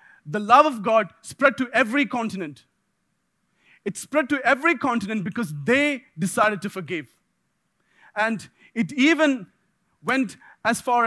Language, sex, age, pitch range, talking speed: English, male, 30-49, 190-255 Hz, 130 wpm